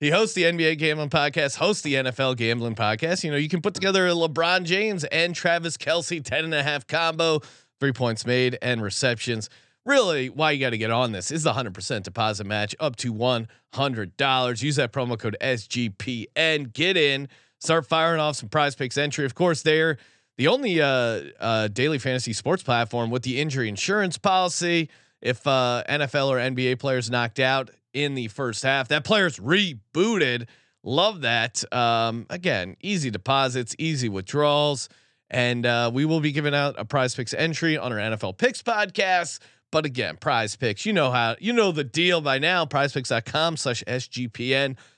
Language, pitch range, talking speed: English, 120-160 Hz, 175 wpm